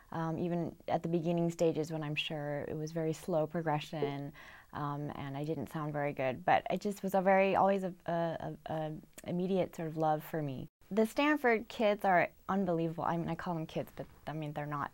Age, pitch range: 20-39, 160-190 Hz